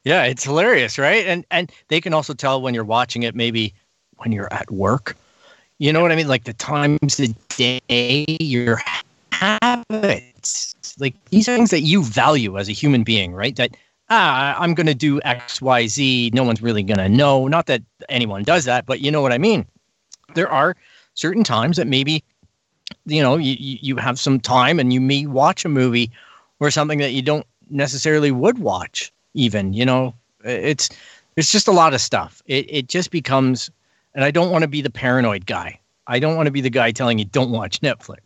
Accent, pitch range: American, 115-150 Hz